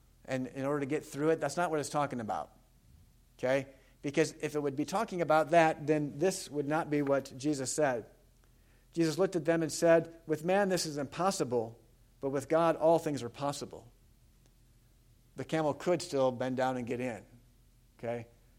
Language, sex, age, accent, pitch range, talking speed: English, male, 50-69, American, 130-195 Hz, 185 wpm